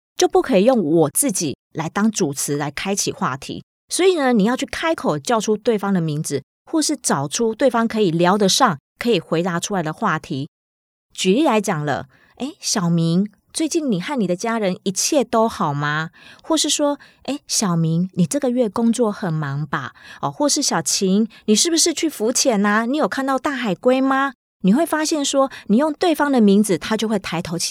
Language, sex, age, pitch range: Chinese, female, 20-39, 175-255 Hz